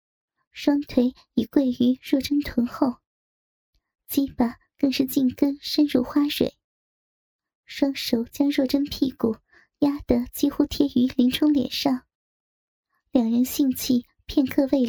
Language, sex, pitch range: Chinese, male, 250-290 Hz